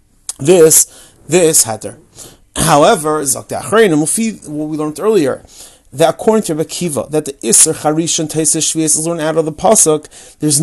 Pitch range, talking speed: 150-210 Hz, 155 wpm